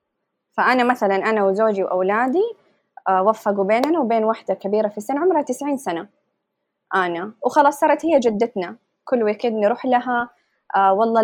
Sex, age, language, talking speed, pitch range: female, 20-39, Arabic, 135 wpm, 205-270 Hz